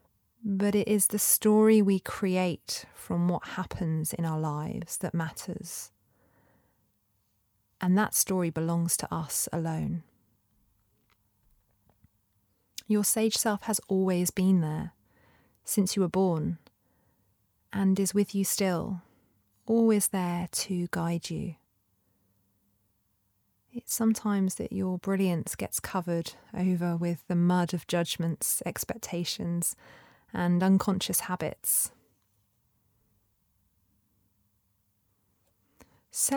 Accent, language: British, English